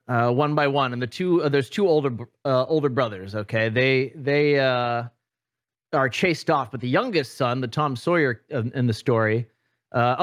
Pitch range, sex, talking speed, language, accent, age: 120-150 Hz, male, 190 wpm, English, American, 30-49